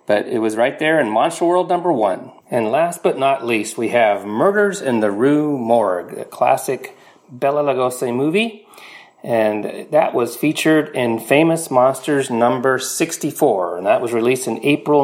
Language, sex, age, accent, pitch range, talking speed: English, male, 40-59, American, 120-170 Hz, 170 wpm